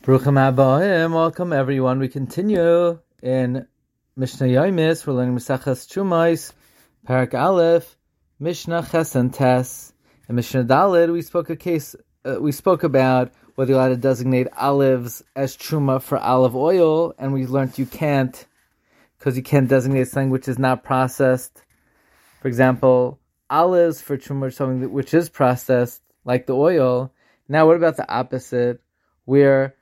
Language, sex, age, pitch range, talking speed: English, male, 20-39, 130-165 Hz, 140 wpm